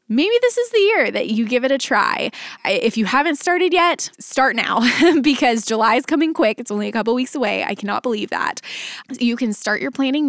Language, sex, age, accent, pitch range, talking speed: English, female, 20-39, American, 205-270 Hz, 220 wpm